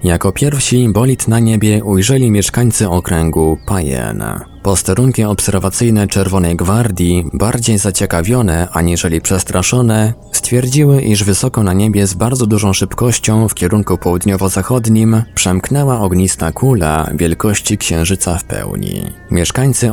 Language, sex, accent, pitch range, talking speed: Polish, male, native, 85-110 Hz, 110 wpm